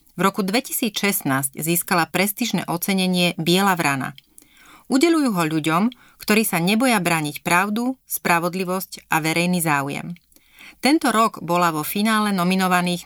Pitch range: 165-210 Hz